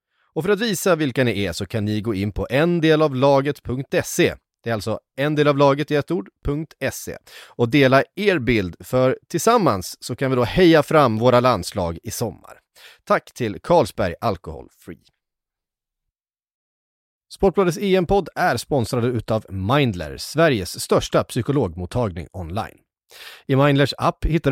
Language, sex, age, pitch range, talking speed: Swedish, male, 30-49, 110-165 Hz, 135 wpm